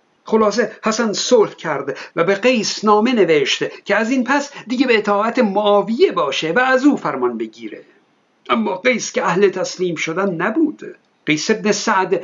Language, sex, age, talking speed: Persian, male, 60-79, 160 wpm